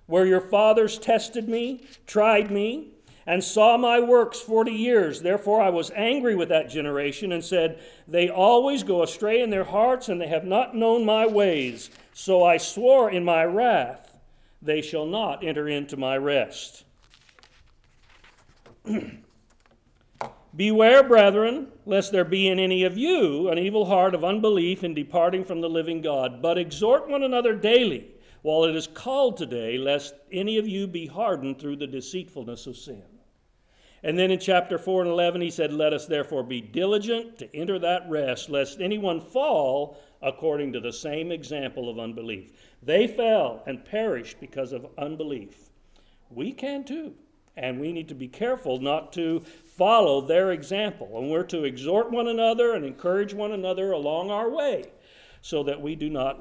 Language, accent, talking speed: English, American, 165 wpm